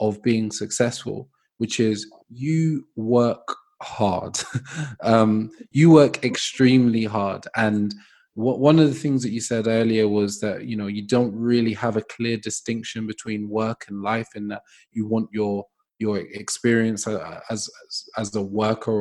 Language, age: English, 20-39